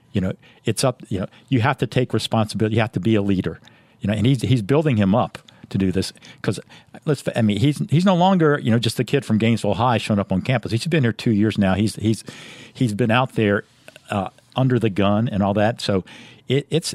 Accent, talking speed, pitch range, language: American, 245 wpm, 100-125 Hz, English